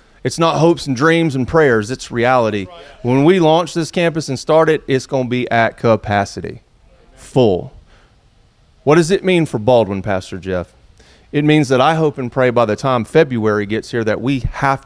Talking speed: 190 wpm